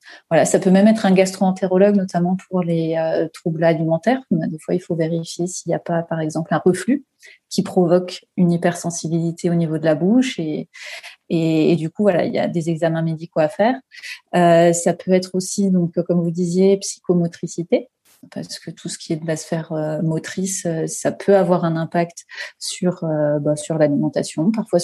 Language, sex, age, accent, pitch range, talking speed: French, female, 30-49, French, 165-190 Hz, 195 wpm